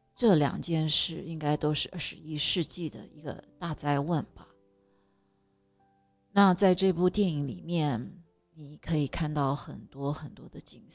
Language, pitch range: Chinese, 145-180 Hz